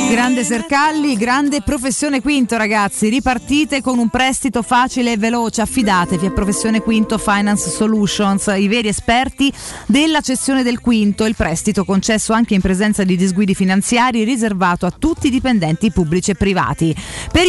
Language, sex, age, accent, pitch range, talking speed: Italian, female, 30-49, native, 185-250 Hz, 150 wpm